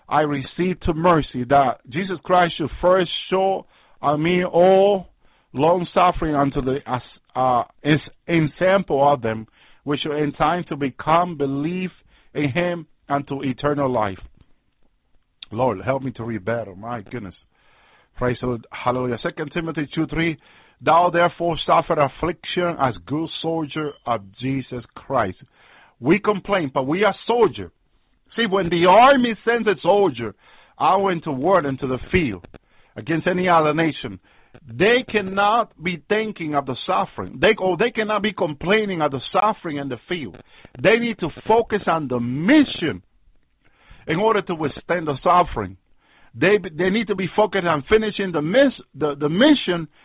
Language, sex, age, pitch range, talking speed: English, male, 50-69, 140-185 Hz, 150 wpm